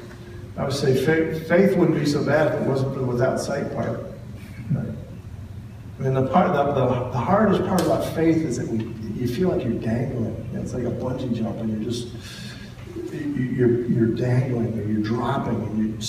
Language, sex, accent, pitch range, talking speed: English, male, American, 115-170 Hz, 195 wpm